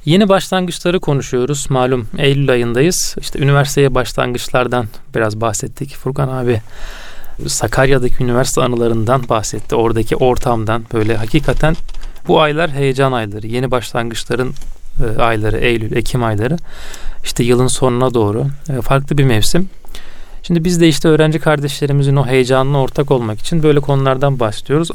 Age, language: 40-59, Turkish